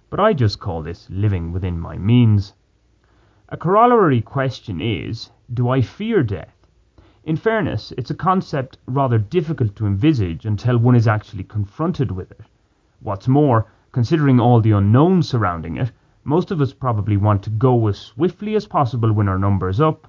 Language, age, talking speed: English, 30-49, 165 wpm